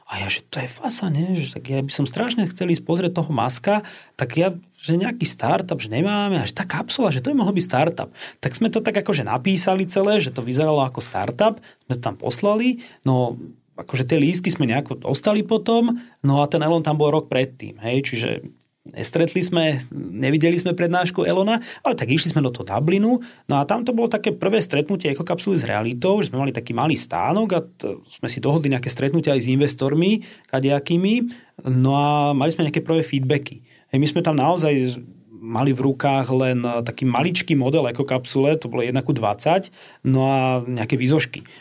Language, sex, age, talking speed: Slovak, male, 30-49, 200 wpm